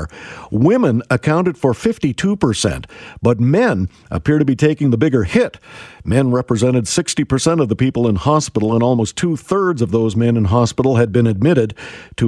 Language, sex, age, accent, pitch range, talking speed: English, male, 50-69, American, 115-155 Hz, 170 wpm